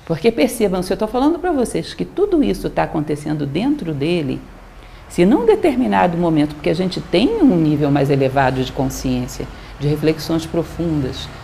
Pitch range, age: 155-255 Hz, 50-69